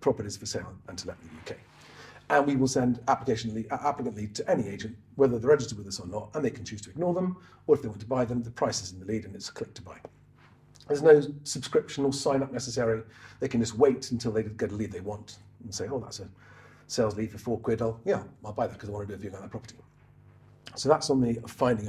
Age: 40-59